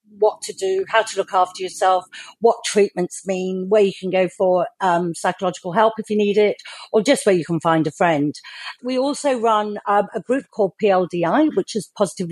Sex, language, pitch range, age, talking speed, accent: female, English, 170-220 Hz, 50-69, 205 wpm, British